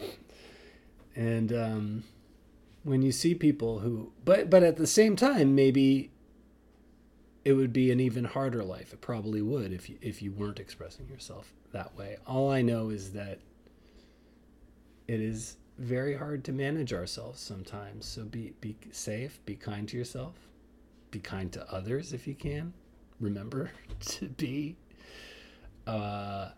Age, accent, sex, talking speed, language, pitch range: 30-49, American, male, 145 wpm, English, 105-135 Hz